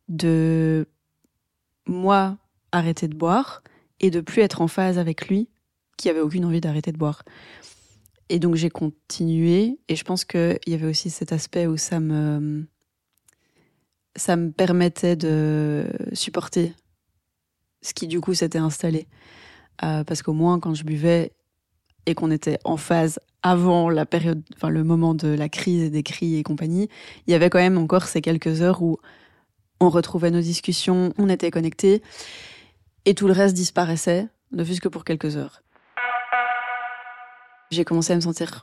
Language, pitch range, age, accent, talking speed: French, 155-185 Hz, 20-39, French, 165 wpm